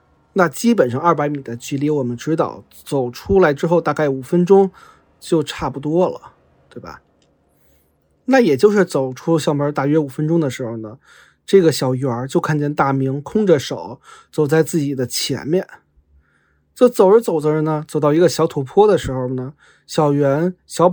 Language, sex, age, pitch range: Chinese, male, 30-49, 140-190 Hz